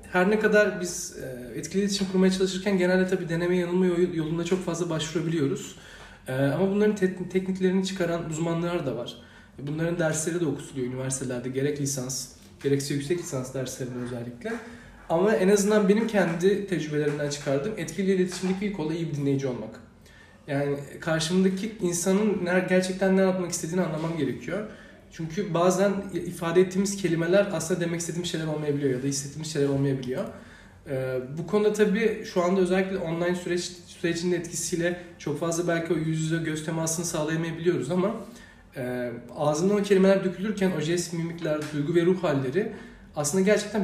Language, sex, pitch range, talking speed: Turkish, male, 145-190 Hz, 150 wpm